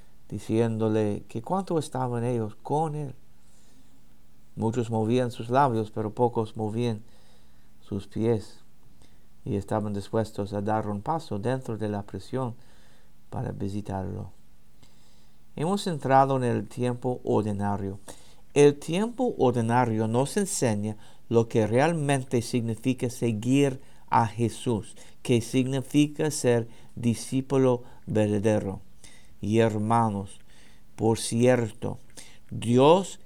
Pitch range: 100-130 Hz